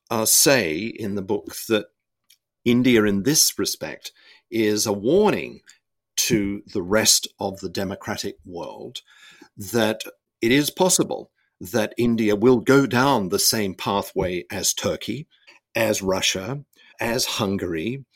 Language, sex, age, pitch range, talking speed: English, male, 50-69, 105-125 Hz, 125 wpm